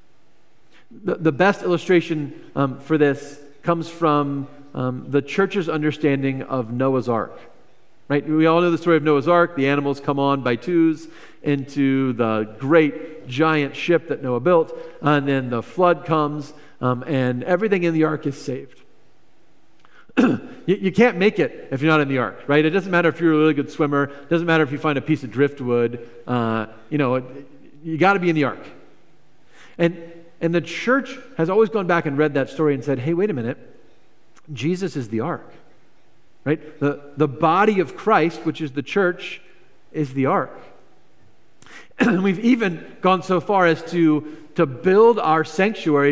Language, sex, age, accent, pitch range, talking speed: English, male, 40-59, American, 140-175 Hz, 180 wpm